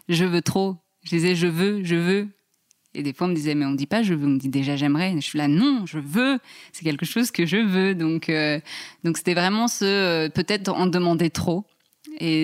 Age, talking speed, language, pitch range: 20-39, 300 wpm, French, 155-185 Hz